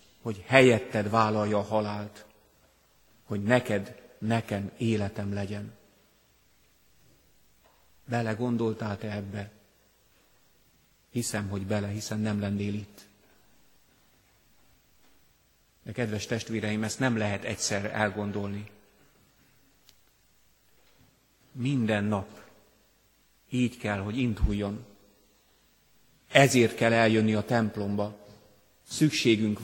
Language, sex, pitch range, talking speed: Hungarian, male, 105-120 Hz, 80 wpm